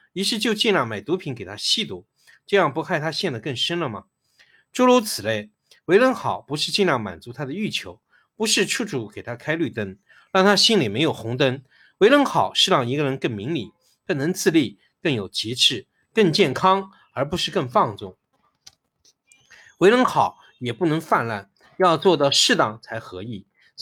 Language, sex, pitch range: Chinese, male, 120-195 Hz